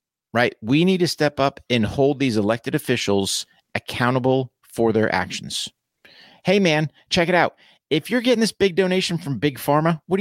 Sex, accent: male, American